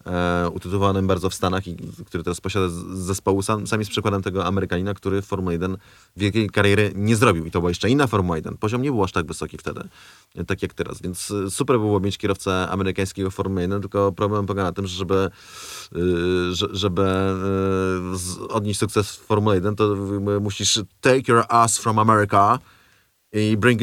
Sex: male